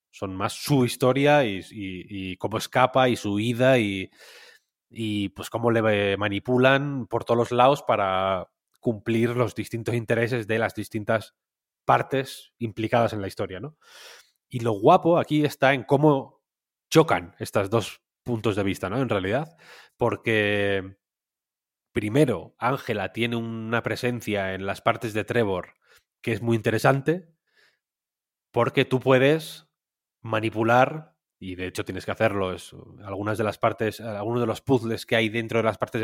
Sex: male